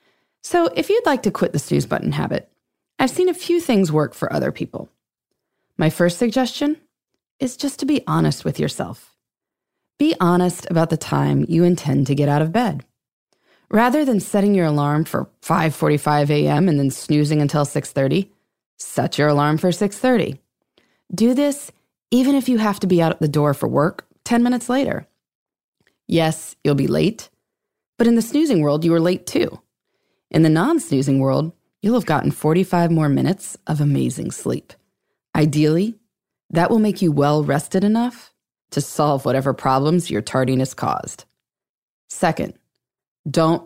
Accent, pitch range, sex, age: American, 145-225 Hz, female, 20-39